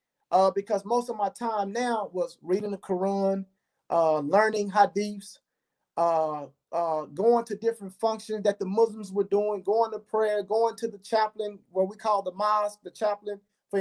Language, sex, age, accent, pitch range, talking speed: English, male, 30-49, American, 180-230 Hz, 175 wpm